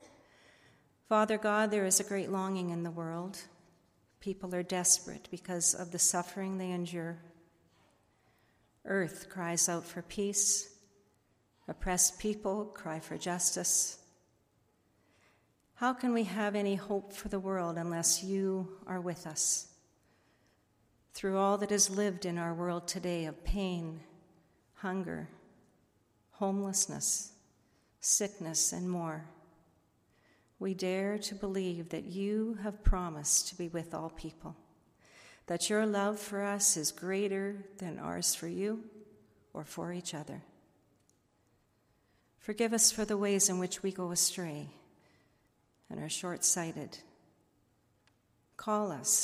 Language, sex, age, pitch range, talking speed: English, female, 50-69, 170-200 Hz, 125 wpm